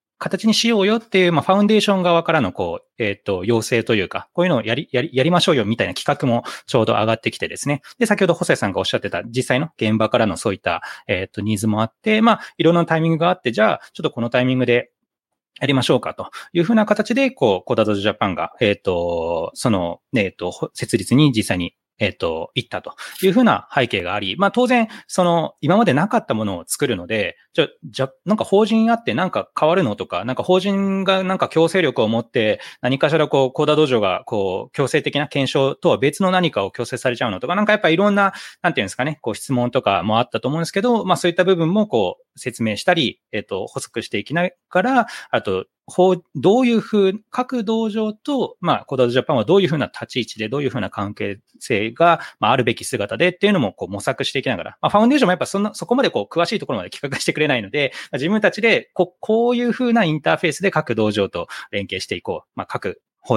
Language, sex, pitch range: Japanese, male, 120-200 Hz